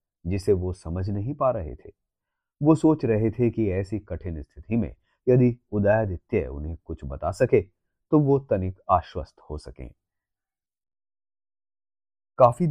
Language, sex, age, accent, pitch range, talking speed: Hindi, male, 30-49, native, 85-125 Hz, 135 wpm